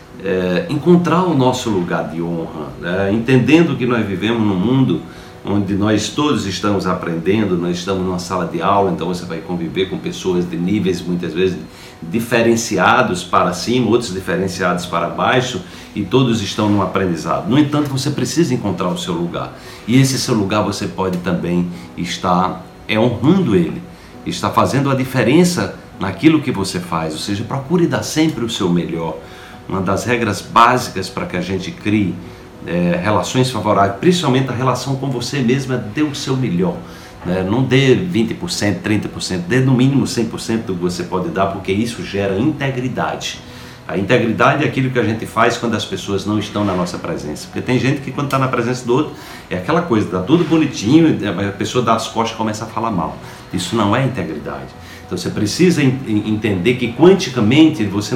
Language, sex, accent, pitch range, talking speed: Portuguese, male, Brazilian, 95-130 Hz, 180 wpm